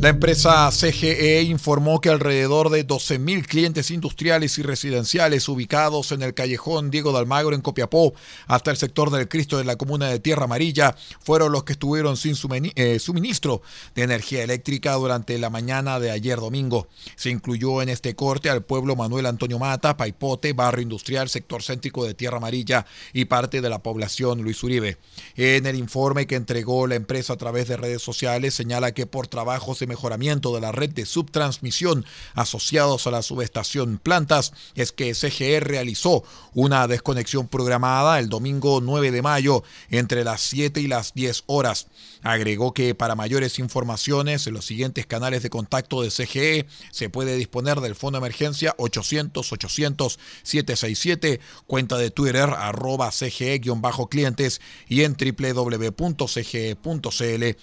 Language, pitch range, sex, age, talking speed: Spanish, 120-145 Hz, male, 40-59, 155 wpm